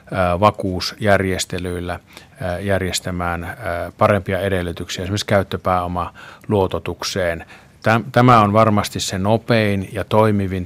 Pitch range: 90-105 Hz